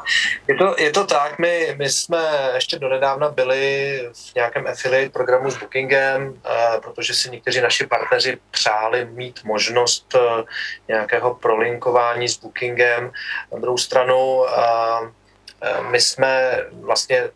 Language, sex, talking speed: Czech, male, 135 wpm